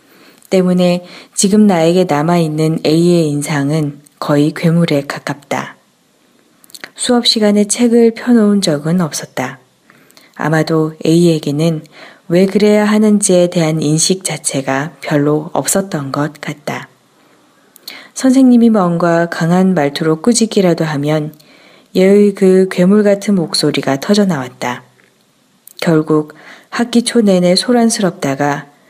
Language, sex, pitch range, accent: Korean, female, 155-205 Hz, native